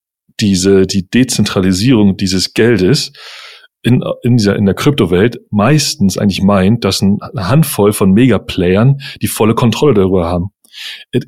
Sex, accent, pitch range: male, German, 95-115 Hz